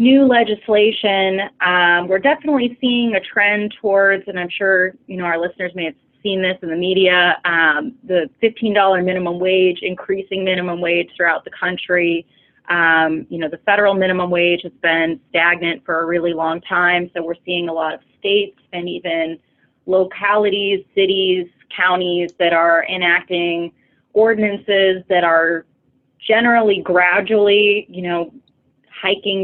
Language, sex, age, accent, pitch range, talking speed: English, female, 20-39, American, 170-200 Hz, 145 wpm